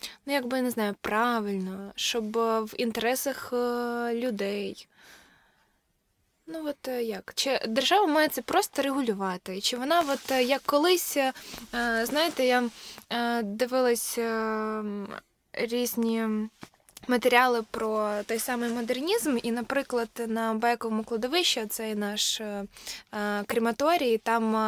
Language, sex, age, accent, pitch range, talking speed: Ukrainian, female, 20-39, native, 220-260 Hz, 100 wpm